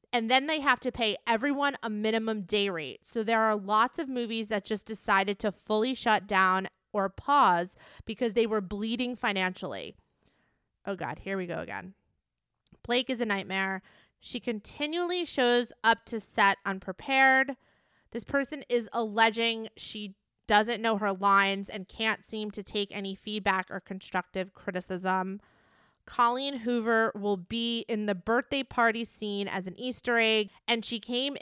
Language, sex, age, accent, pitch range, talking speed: English, female, 20-39, American, 195-235 Hz, 160 wpm